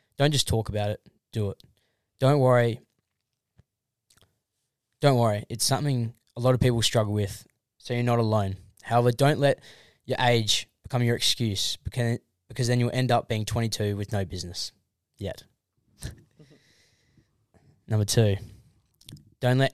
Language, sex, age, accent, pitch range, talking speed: English, male, 10-29, Australian, 105-125 Hz, 140 wpm